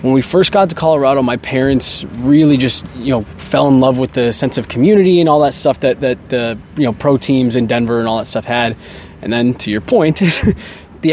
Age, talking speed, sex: 20-39, 235 wpm, male